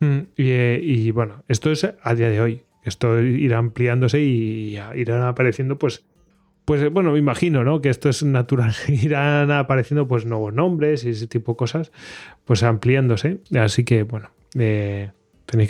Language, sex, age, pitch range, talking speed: Spanish, male, 20-39, 115-140 Hz, 165 wpm